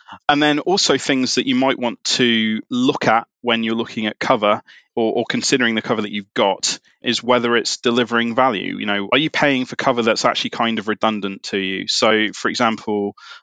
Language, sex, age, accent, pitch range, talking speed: English, male, 20-39, British, 105-125 Hz, 205 wpm